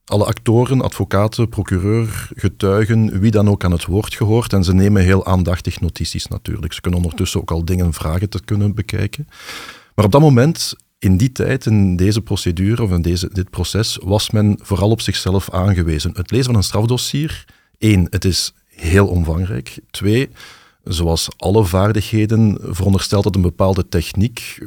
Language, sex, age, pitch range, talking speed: Dutch, male, 50-69, 90-110 Hz, 165 wpm